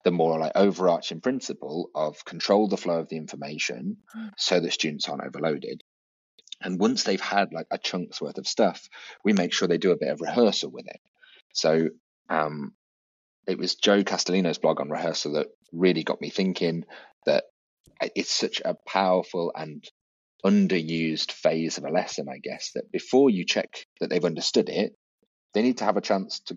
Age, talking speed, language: 30-49, 180 wpm, English